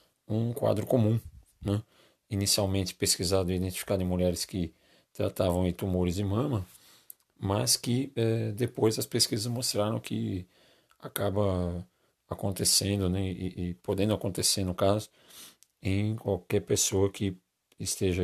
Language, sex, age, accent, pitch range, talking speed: Portuguese, male, 40-59, Brazilian, 90-110 Hz, 125 wpm